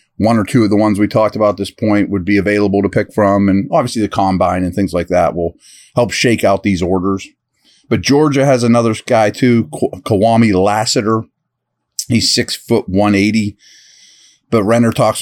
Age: 30-49